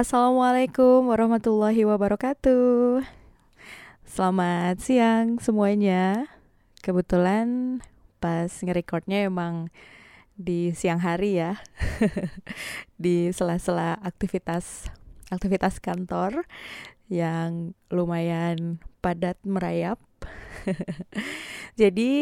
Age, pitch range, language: 20-39, 170-215 Hz, Indonesian